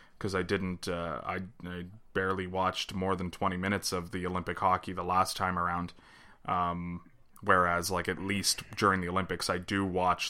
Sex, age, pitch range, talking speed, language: male, 20-39, 90-110 Hz, 180 wpm, English